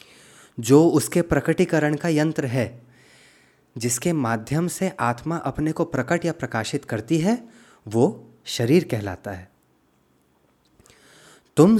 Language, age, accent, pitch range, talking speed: Hindi, 20-39, native, 115-165 Hz, 110 wpm